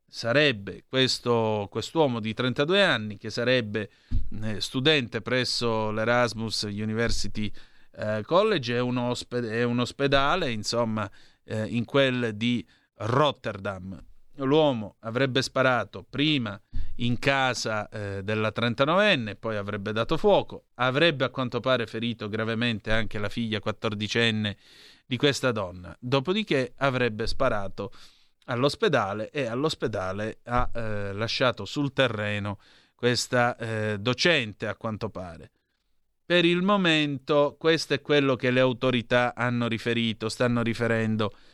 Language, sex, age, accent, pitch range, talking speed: Italian, male, 30-49, native, 110-130 Hz, 115 wpm